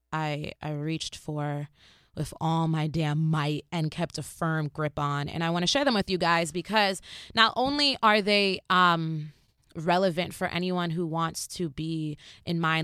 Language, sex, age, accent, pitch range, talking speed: English, female, 20-39, American, 155-195 Hz, 180 wpm